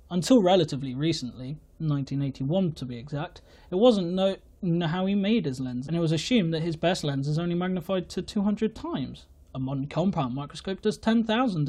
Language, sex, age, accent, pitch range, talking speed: English, male, 20-39, British, 145-195 Hz, 185 wpm